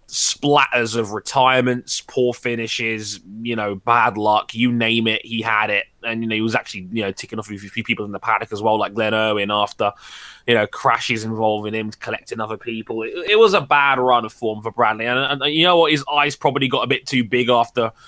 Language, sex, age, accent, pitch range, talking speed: English, male, 20-39, British, 115-145 Hz, 230 wpm